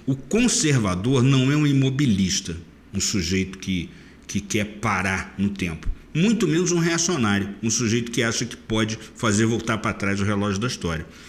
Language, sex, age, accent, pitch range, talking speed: Portuguese, male, 60-79, Brazilian, 100-130 Hz, 170 wpm